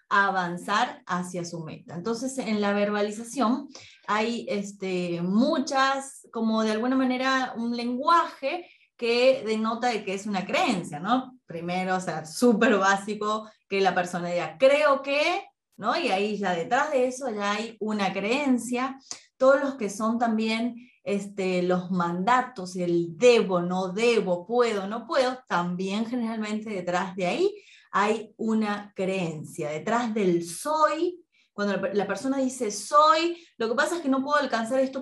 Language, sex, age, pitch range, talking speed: Spanish, female, 20-39, 195-255 Hz, 145 wpm